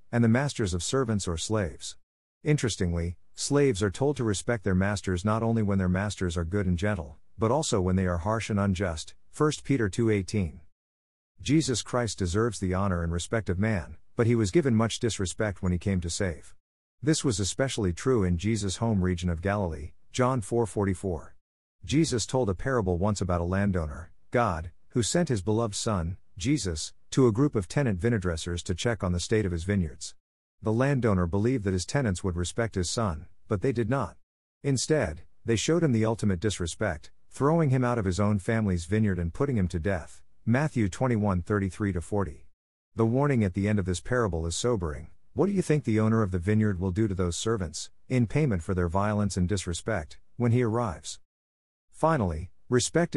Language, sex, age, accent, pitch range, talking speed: English, male, 50-69, American, 90-115 Hz, 190 wpm